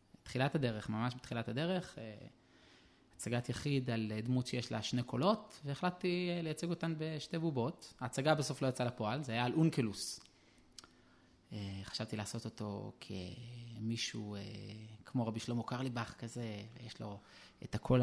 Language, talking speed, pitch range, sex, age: Hebrew, 145 wpm, 110-140 Hz, male, 20-39